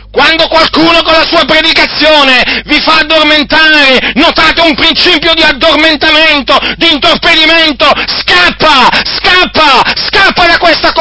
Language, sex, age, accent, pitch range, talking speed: Italian, male, 40-59, native, 265-325 Hz, 115 wpm